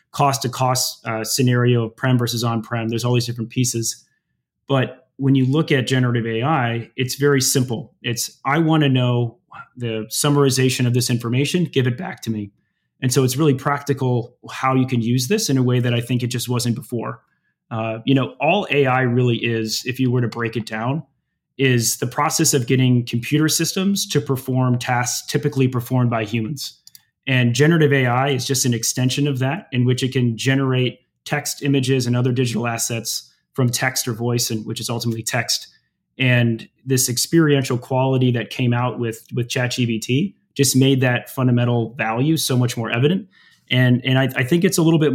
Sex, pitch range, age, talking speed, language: male, 120-135 Hz, 30-49, 190 wpm, English